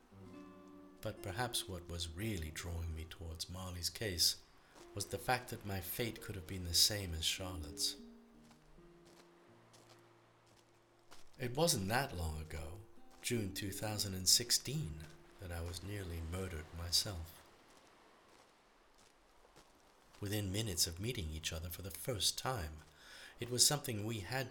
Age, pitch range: 50-69, 85-110 Hz